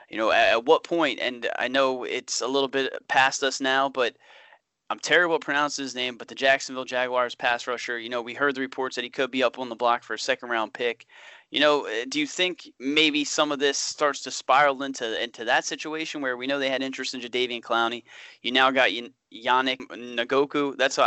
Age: 30-49